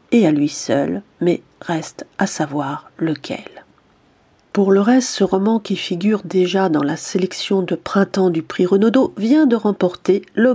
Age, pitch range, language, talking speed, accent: 40-59, 175-215 Hz, French, 165 wpm, French